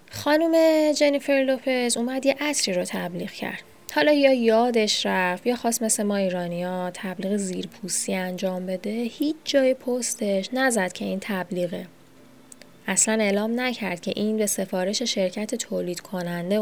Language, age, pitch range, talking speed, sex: Persian, 10-29, 185-235 Hz, 140 wpm, female